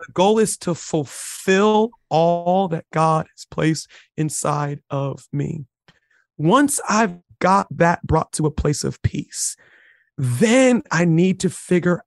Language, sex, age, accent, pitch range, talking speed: English, male, 40-59, American, 160-205 Hz, 140 wpm